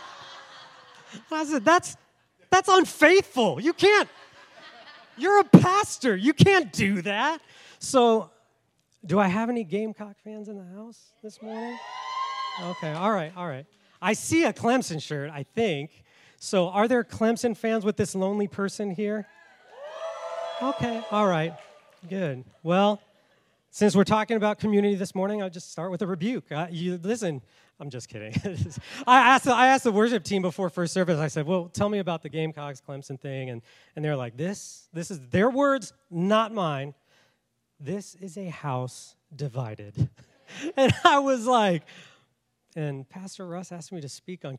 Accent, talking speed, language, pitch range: American, 160 wpm, English, 155-225 Hz